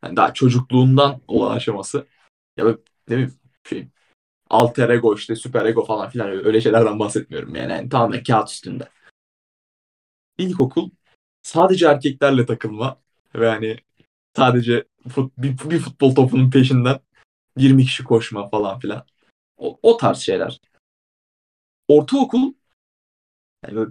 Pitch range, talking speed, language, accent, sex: 120-150 Hz, 120 wpm, Turkish, native, male